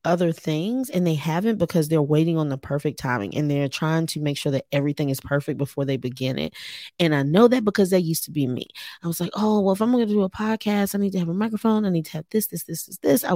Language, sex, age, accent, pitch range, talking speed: English, female, 20-39, American, 150-190 Hz, 290 wpm